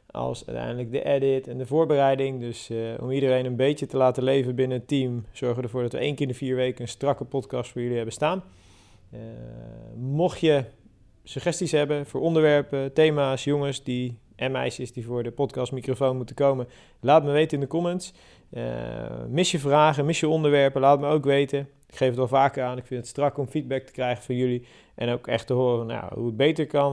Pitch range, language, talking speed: 125-145 Hz, Dutch, 215 wpm